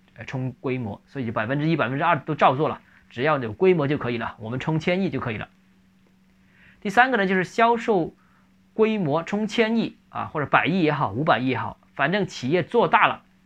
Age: 20-39